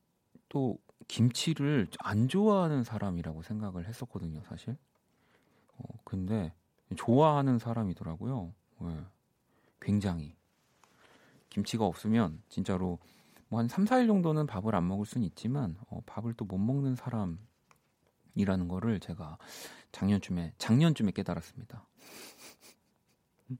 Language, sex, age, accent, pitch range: Korean, male, 40-59, native, 90-130 Hz